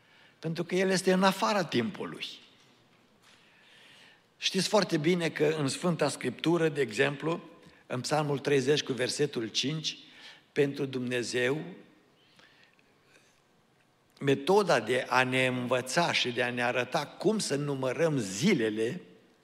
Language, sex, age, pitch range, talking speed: Romanian, male, 60-79, 125-160 Hz, 115 wpm